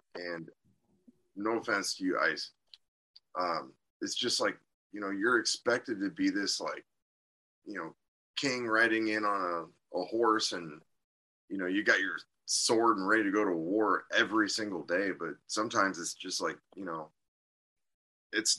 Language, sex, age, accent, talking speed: English, male, 20-39, American, 165 wpm